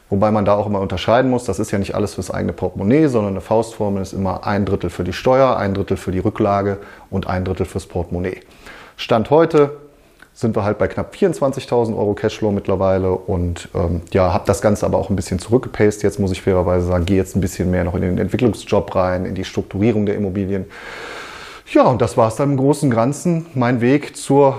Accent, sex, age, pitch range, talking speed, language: German, male, 30-49, 95-115 Hz, 220 wpm, German